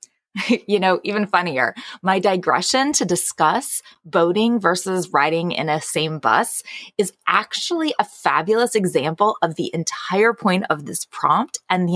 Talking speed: 145 wpm